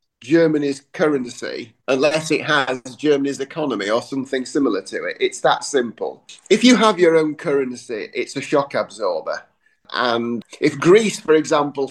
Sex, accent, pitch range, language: male, British, 130-155 Hz, English